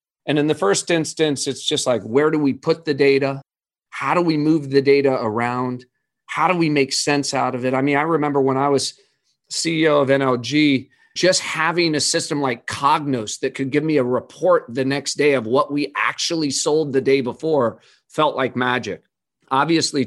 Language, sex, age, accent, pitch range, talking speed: English, male, 30-49, American, 125-150 Hz, 195 wpm